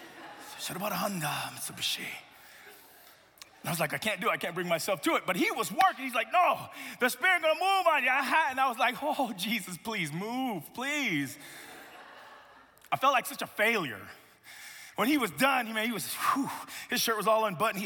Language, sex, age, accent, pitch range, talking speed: English, male, 30-49, American, 180-290 Hz, 190 wpm